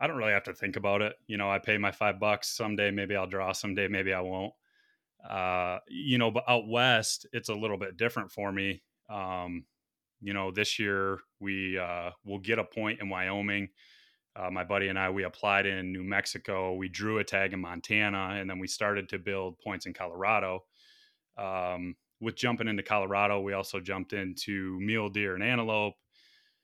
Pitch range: 95-110 Hz